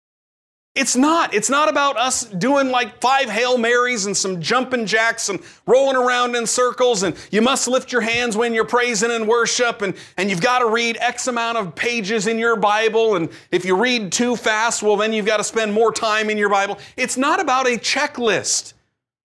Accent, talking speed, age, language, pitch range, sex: American, 205 wpm, 40-59, English, 195-250 Hz, male